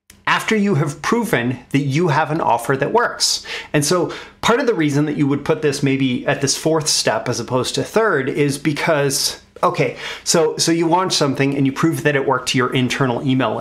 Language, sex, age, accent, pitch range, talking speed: English, male, 30-49, American, 135-165 Hz, 215 wpm